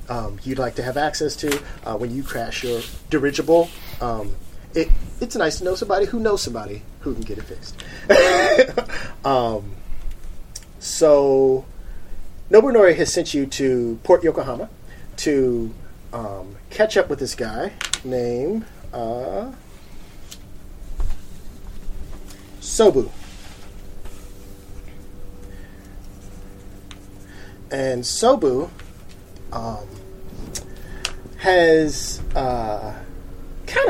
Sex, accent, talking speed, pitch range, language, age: male, American, 90 wpm, 95-140 Hz, English, 40-59